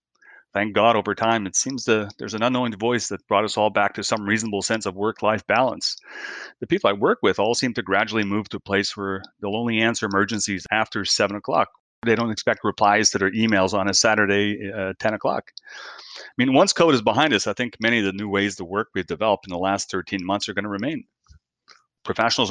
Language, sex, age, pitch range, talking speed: English, male, 30-49, 95-115 Hz, 230 wpm